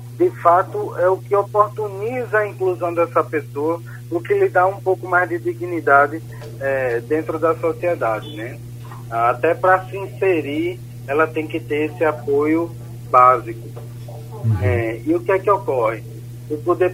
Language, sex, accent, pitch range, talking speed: Portuguese, male, Brazilian, 120-160 Hz, 155 wpm